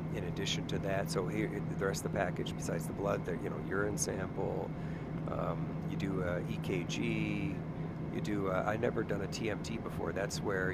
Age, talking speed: 40-59, 190 wpm